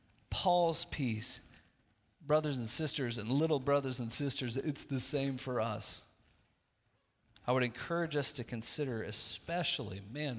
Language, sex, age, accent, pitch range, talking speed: English, male, 40-59, American, 105-135 Hz, 135 wpm